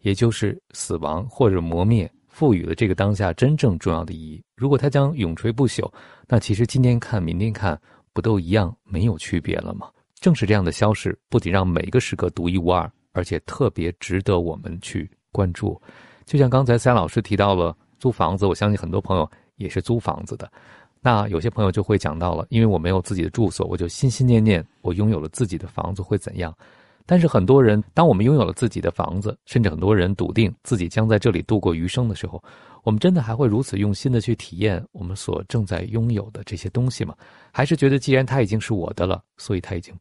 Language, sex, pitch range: Chinese, male, 90-120 Hz